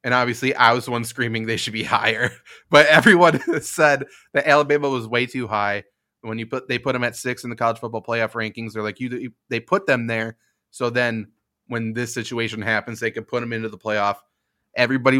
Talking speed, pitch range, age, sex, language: 215 wpm, 115-145 Hz, 20-39, male, English